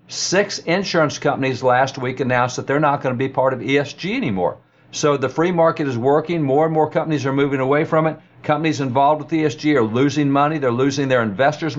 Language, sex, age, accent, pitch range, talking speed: English, male, 60-79, American, 130-155 Hz, 210 wpm